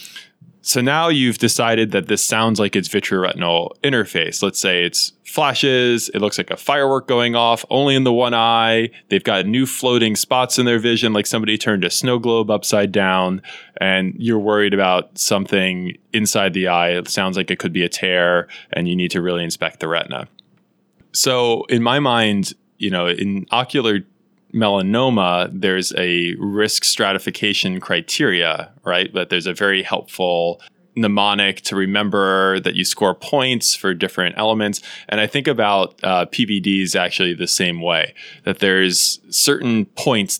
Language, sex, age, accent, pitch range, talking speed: English, male, 20-39, American, 90-115 Hz, 165 wpm